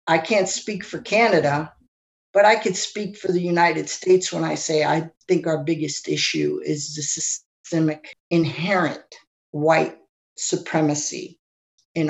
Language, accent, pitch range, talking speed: English, American, 155-185 Hz, 140 wpm